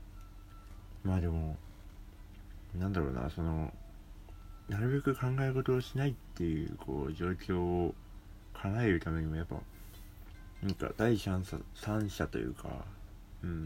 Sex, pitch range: male, 85-100 Hz